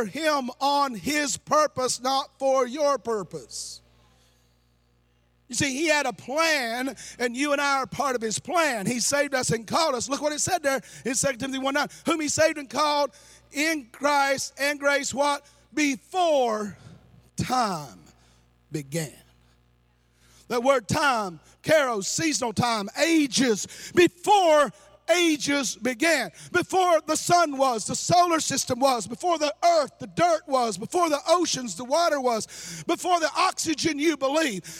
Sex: male